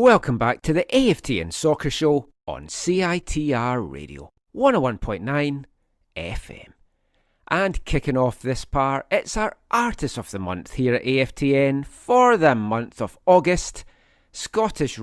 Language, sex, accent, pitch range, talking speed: English, male, British, 120-165 Hz, 130 wpm